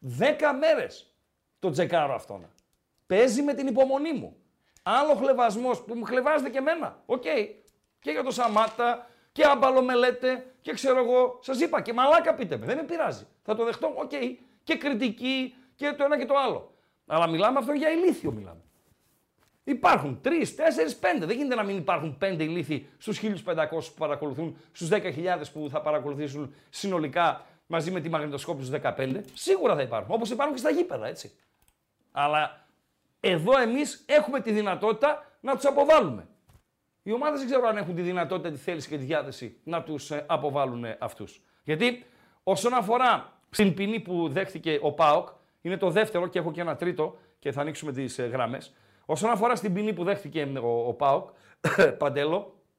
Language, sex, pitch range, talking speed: Greek, male, 160-270 Hz, 175 wpm